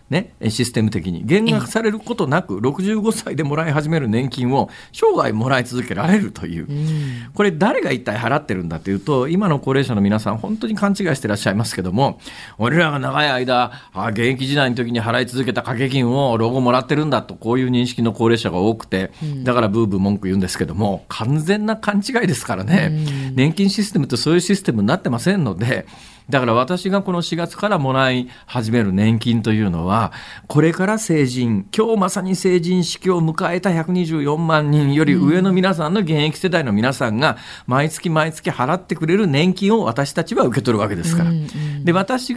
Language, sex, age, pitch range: Japanese, male, 40-59, 115-170 Hz